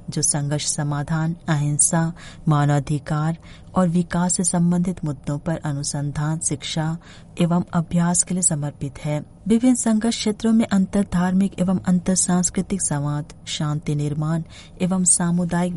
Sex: female